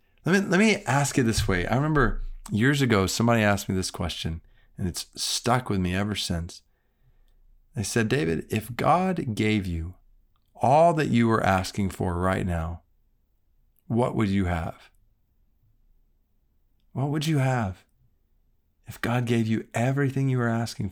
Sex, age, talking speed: male, 40-59, 155 wpm